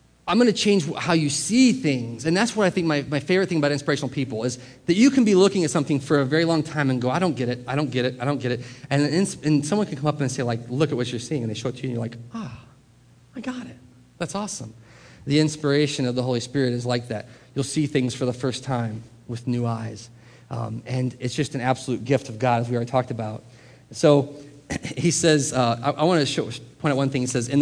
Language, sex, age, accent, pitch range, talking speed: English, male, 30-49, American, 125-155 Hz, 275 wpm